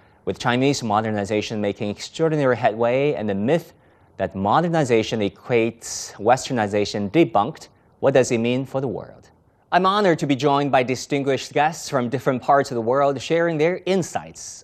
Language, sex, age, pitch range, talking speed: English, male, 20-39, 115-140 Hz, 155 wpm